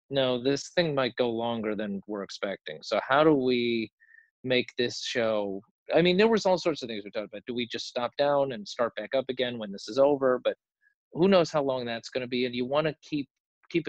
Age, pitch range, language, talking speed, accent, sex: 40-59, 115-140 Hz, English, 240 wpm, American, male